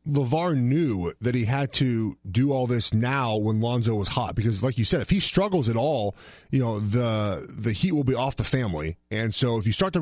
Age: 30-49